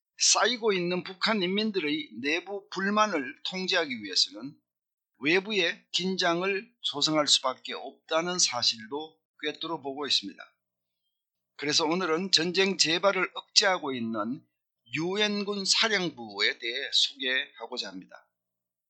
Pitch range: 130-195 Hz